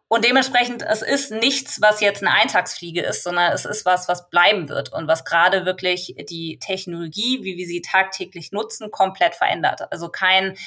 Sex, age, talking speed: female, 20-39, 180 wpm